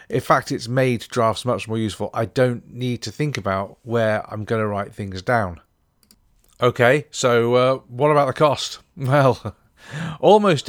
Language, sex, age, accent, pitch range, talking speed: English, male, 40-59, British, 105-130 Hz, 170 wpm